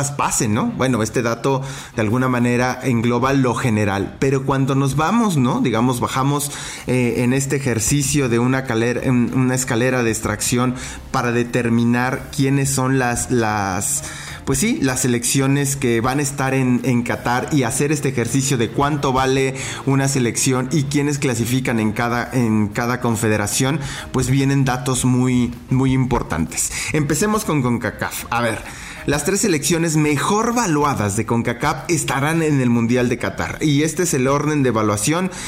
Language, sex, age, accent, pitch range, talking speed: English, male, 30-49, Mexican, 120-140 Hz, 160 wpm